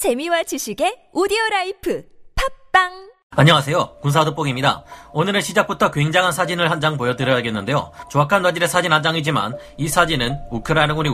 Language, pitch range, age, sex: Korean, 135-180 Hz, 40-59, male